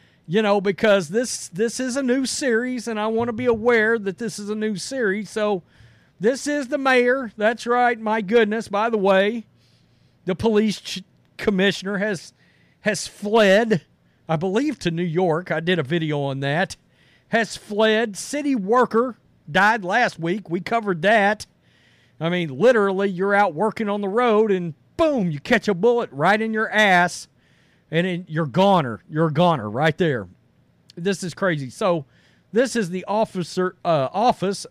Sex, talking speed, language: male, 170 wpm, English